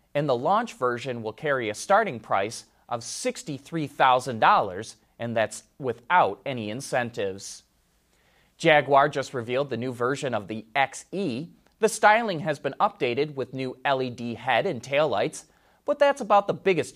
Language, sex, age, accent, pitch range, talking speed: English, male, 30-49, American, 125-190 Hz, 145 wpm